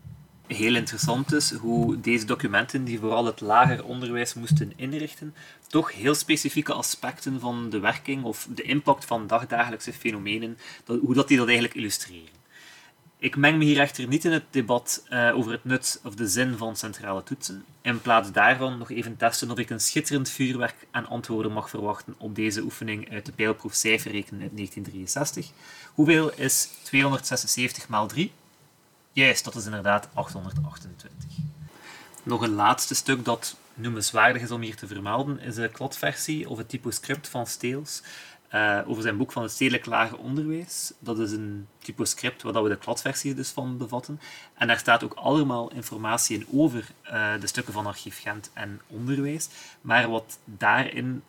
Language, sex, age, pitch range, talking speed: Dutch, male, 30-49, 110-140 Hz, 165 wpm